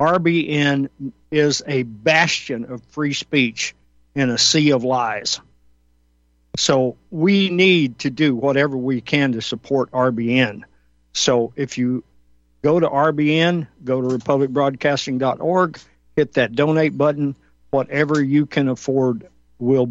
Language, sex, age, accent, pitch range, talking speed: English, male, 50-69, American, 115-145 Hz, 125 wpm